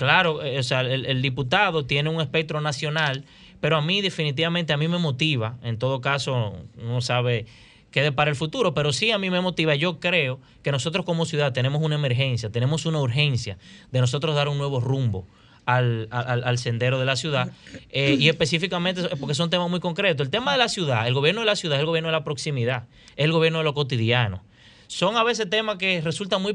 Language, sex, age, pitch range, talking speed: Spanish, male, 30-49, 130-170 Hz, 215 wpm